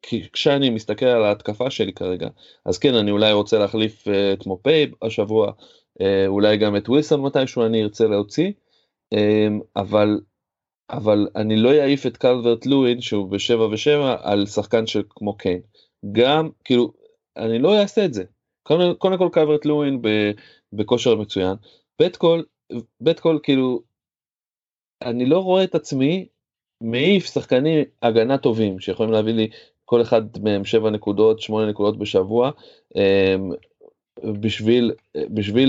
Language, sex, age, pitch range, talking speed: Hebrew, male, 20-39, 105-130 Hz, 130 wpm